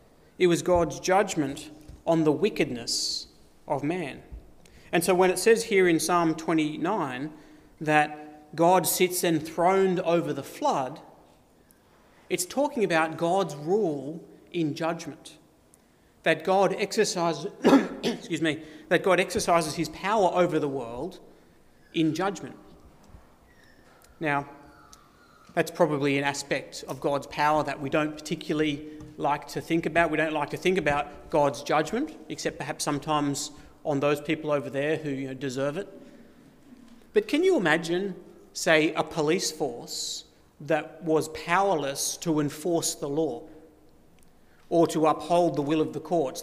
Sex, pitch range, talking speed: male, 150-180 Hz, 130 wpm